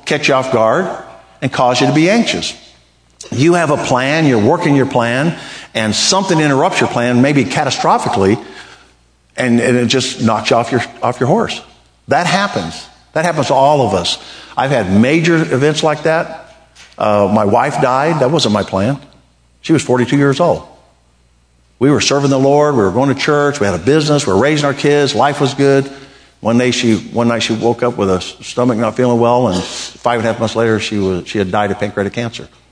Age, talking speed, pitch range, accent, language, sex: 50-69, 205 wpm, 105-140 Hz, American, English, male